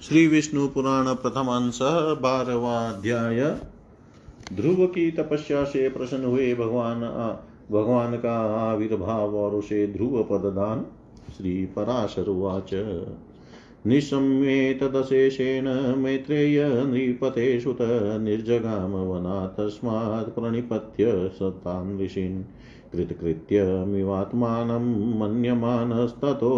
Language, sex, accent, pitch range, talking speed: Hindi, male, native, 105-130 Hz, 65 wpm